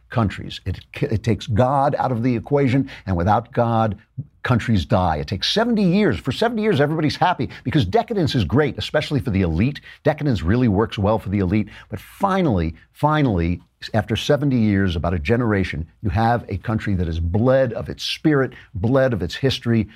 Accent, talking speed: American, 185 wpm